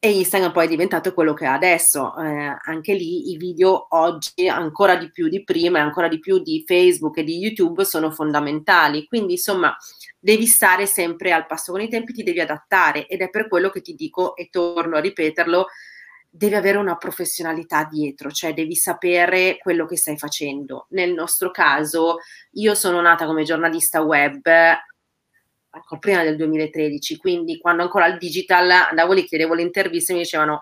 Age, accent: 30-49, native